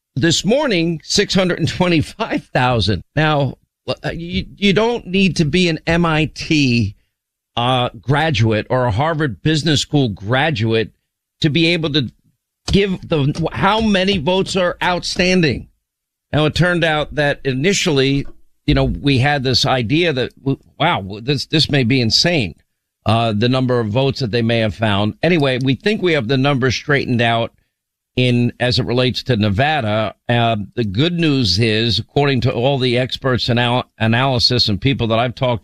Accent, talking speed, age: American, 155 wpm, 50-69